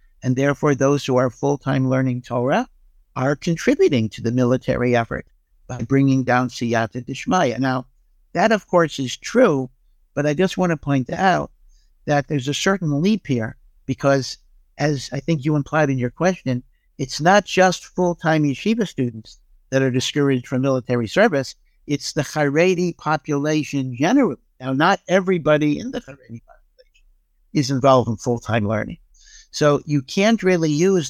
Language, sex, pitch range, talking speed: English, male, 125-155 Hz, 155 wpm